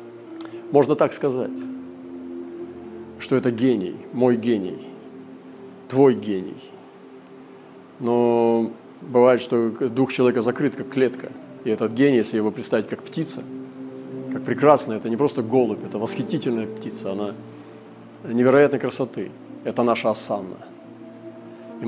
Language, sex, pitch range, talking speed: Russian, male, 110-130 Hz, 115 wpm